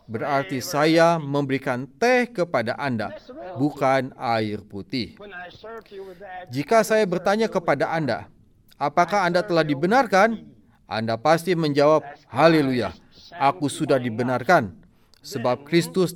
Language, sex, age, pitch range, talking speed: Indonesian, male, 40-59, 130-170 Hz, 100 wpm